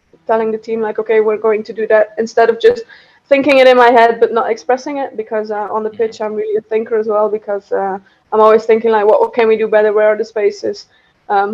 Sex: female